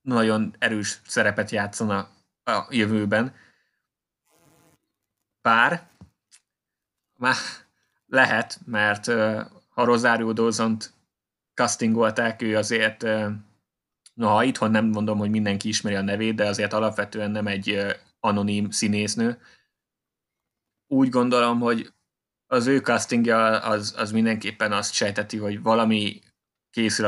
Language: Hungarian